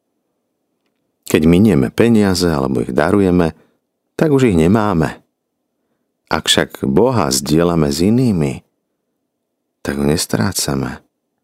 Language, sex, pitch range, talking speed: Slovak, male, 75-100 Hz, 95 wpm